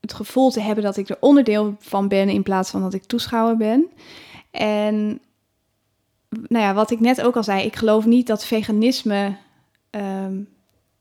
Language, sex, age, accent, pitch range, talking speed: Dutch, female, 10-29, Dutch, 190-220 Hz, 175 wpm